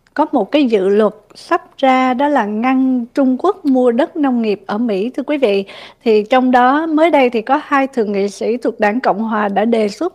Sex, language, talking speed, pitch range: female, Vietnamese, 230 wpm, 220-275 Hz